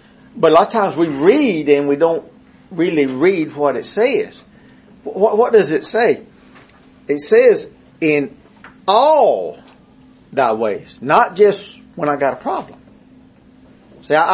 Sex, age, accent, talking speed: male, 50-69, American, 140 wpm